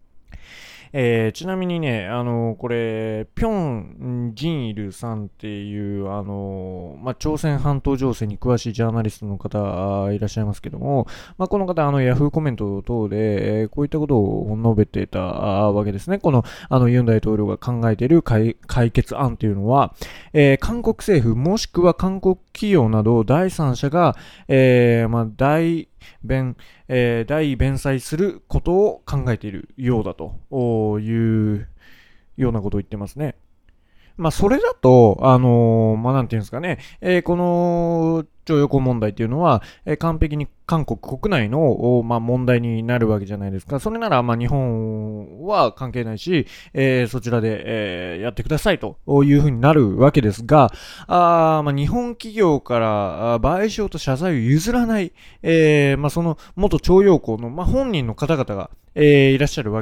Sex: male